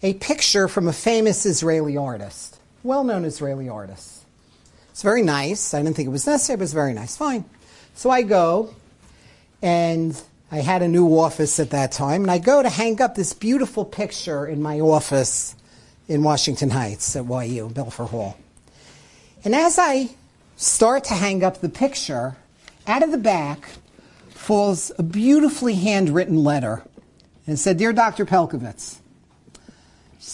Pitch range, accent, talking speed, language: 145-200 Hz, American, 160 wpm, English